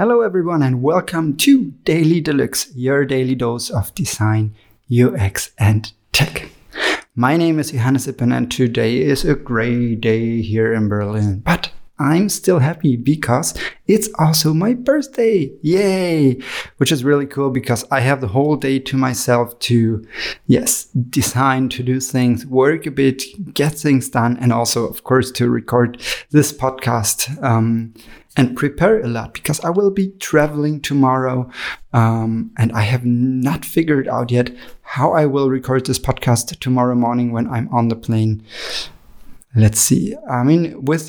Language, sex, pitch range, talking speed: English, male, 115-140 Hz, 160 wpm